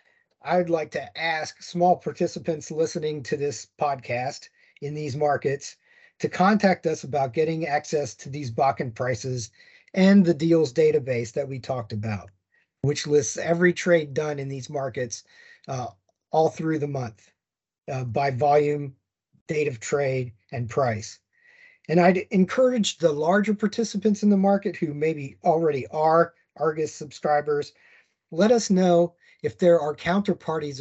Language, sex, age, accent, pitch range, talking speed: English, male, 40-59, American, 140-175 Hz, 145 wpm